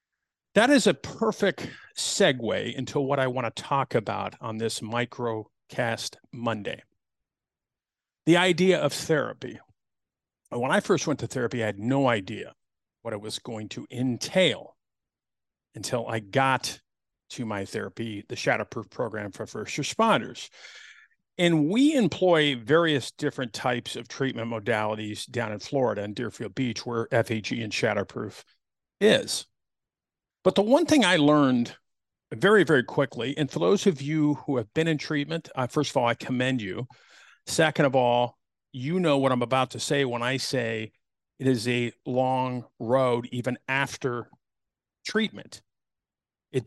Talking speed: 150 wpm